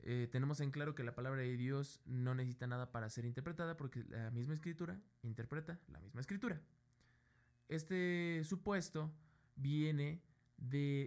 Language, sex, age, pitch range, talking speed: Spanish, male, 20-39, 120-155 Hz, 145 wpm